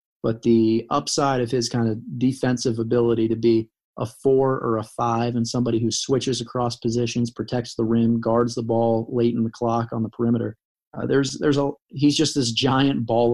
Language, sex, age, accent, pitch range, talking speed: English, male, 30-49, American, 115-130 Hz, 200 wpm